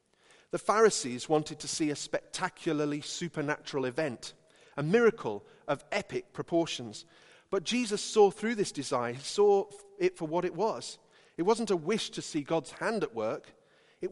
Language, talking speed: English, 160 wpm